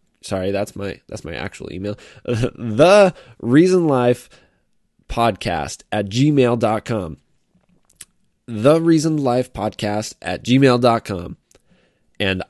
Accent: American